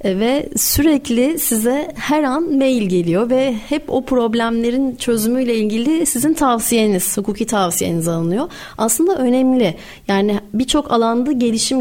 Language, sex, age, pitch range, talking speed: Turkish, female, 30-49, 190-240 Hz, 120 wpm